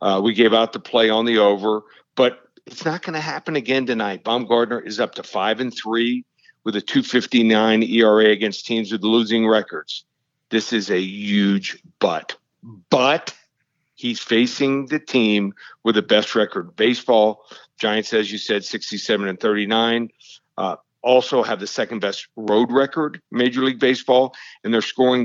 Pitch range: 110-135 Hz